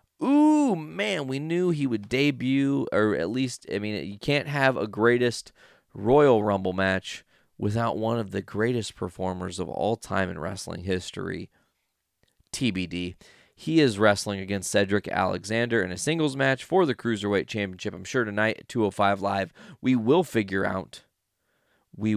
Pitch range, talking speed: 95-120 Hz, 155 wpm